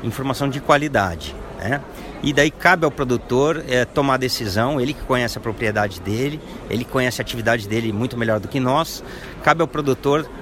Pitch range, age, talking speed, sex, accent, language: 120-150 Hz, 50-69, 185 wpm, male, Brazilian, Portuguese